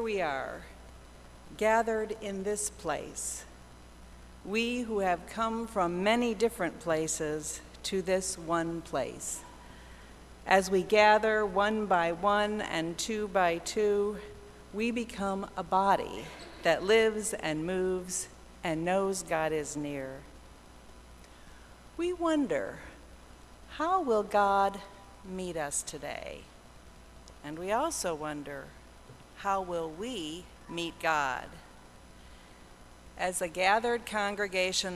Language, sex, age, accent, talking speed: English, female, 50-69, American, 105 wpm